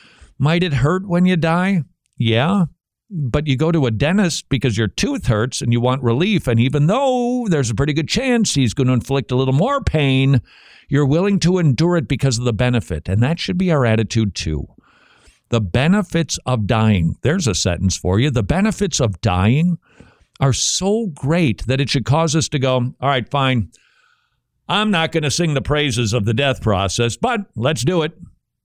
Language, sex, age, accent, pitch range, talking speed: English, male, 50-69, American, 110-160 Hz, 195 wpm